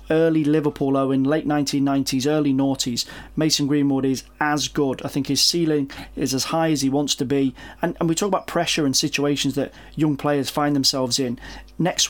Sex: male